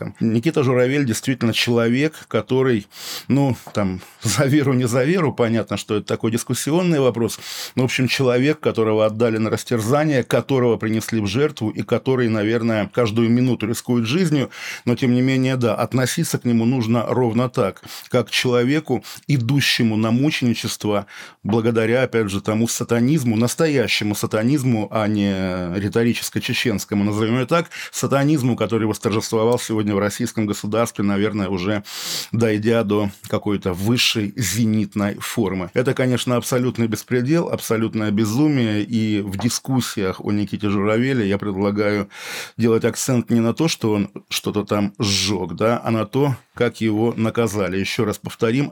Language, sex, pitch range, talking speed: Russian, male, 105-125 Hz, 145 wpm